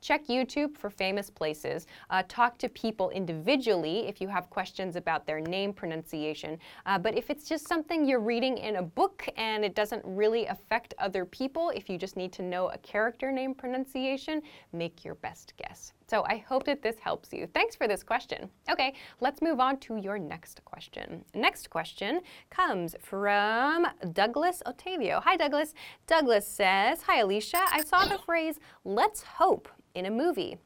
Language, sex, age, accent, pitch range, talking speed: English, female, 10-29, American, 185-270 Hz, 175 wpm